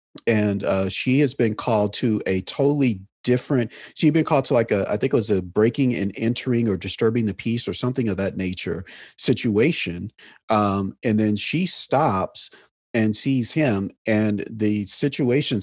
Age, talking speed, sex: 40-59, 175 wpm, male